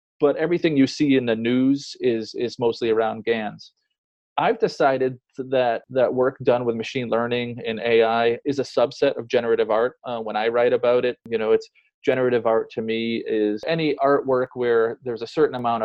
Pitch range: 120-155 Hz